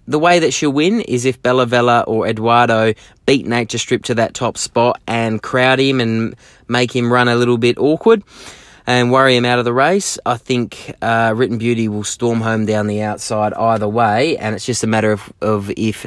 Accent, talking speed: Australian, 215 wpm